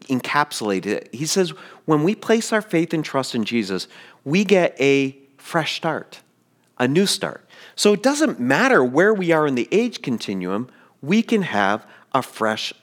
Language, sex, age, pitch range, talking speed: English, male, 40-59, 115-185 Hz, 175 wpm